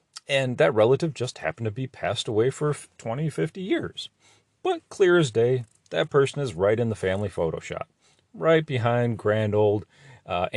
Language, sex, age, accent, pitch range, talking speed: English, male, 40-59, American, 105-155 Hz, 170 wpm